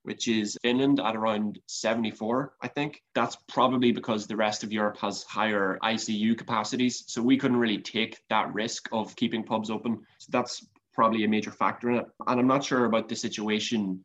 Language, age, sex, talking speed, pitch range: English, 20-39, male, 190 wpm, 105-120 Hz